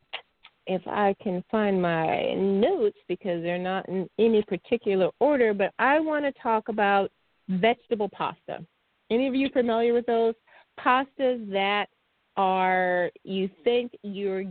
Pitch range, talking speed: 175-235 Hz, 135 wpm